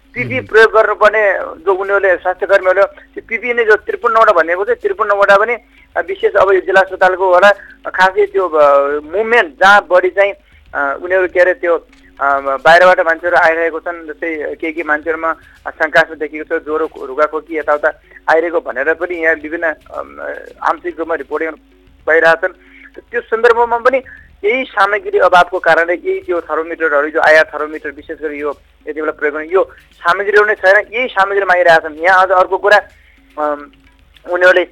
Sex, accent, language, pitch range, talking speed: male, Indian, English, 155-200 Hz, 50 wpm